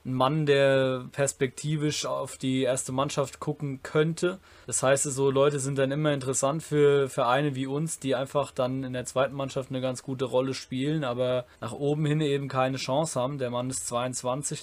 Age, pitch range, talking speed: 20-39, 125-140 Hz, 190 wpm